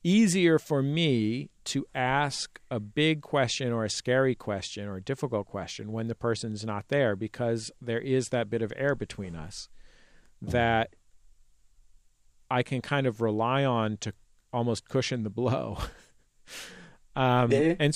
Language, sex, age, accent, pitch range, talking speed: Portuguese, male, 40-59, American, 110-130 Hz, 145 wpm